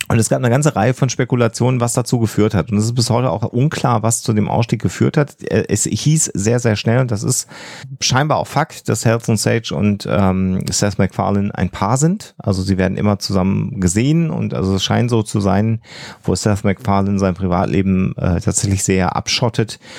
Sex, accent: male, German